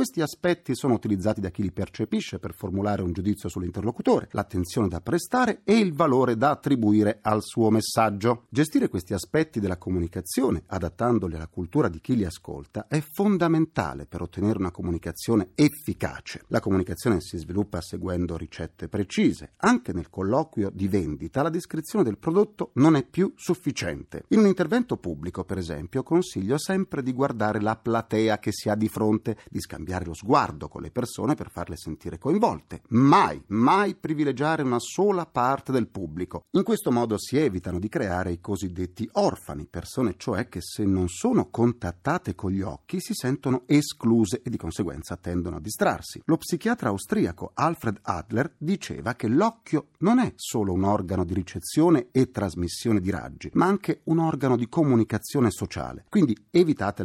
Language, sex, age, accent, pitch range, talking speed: Italian, male, 40-59, native, 95-145 Hz, 165 wpm